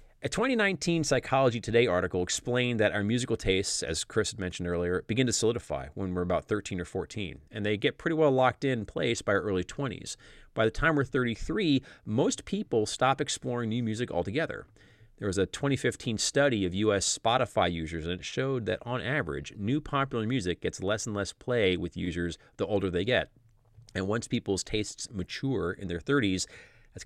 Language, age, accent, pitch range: English, 30-49, American, 95-130 Hz